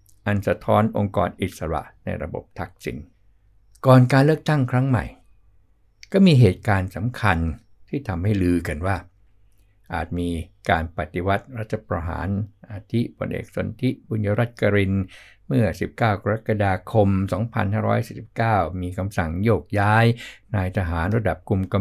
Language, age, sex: Thai, 60-79, male